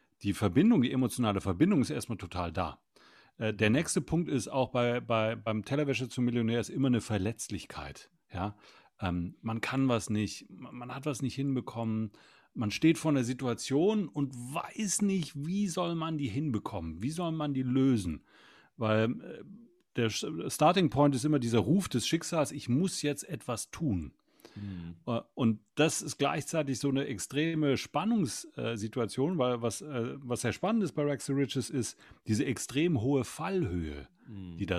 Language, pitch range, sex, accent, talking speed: German, 110-150 Hz, male, German, 160 wpm